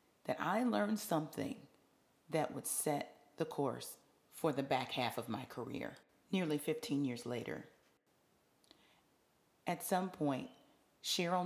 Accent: American